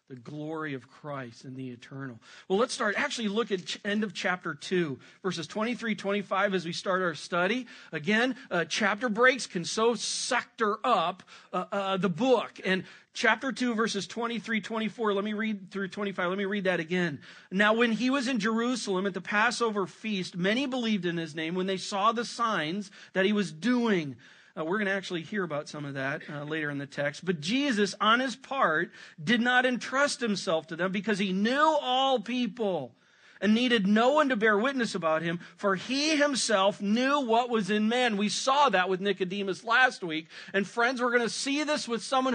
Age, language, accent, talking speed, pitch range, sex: 40-59, English, American, 200 wpm, 175-235 Hz, male